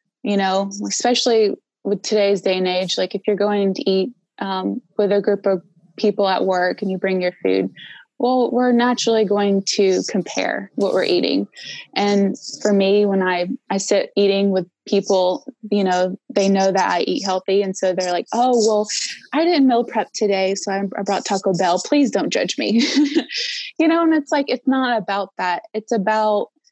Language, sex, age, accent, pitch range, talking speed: English, female, 20-39, American, 190-225 Hz, 190 wpm